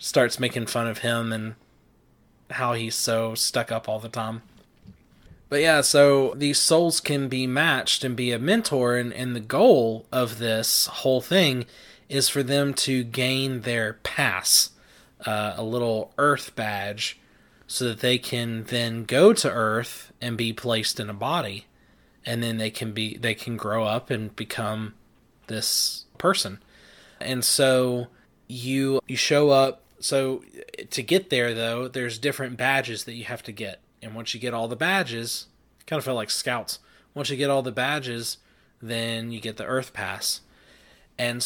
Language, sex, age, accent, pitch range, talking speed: English, male, 20-39, American, 115-135 Hz, 170 wpm